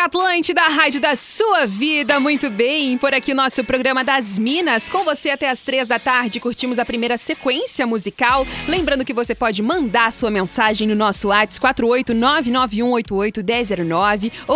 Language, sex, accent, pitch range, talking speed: Portuguese, female, Brazilian, 225-280 Hz, 155 wpm